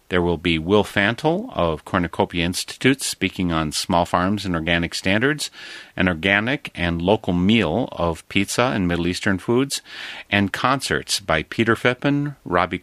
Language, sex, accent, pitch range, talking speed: English, male, American, 85-110 Hz, 150 wpm